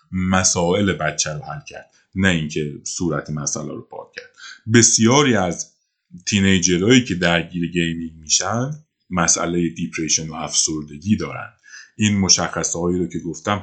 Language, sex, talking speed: Persian, male, 130 wpm